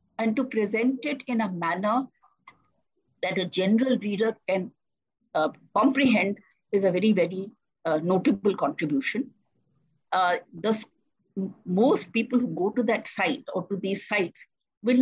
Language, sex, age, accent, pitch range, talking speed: English, female, 50-69, Indian, 190-255 Hz, 140 wpm